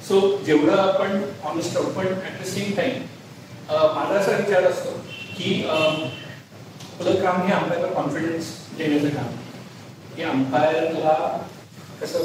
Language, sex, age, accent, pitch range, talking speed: Marathi, male, 40-59, native, 145-185 Hz, 120 wpm